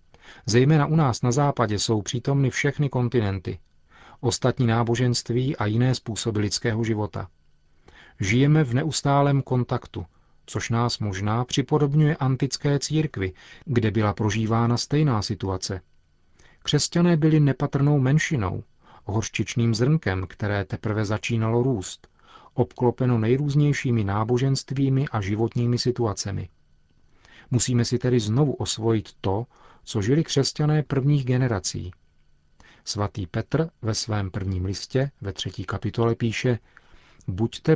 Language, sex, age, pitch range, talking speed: Czech, male, 40-59, 105-135 Hz, 110 wpm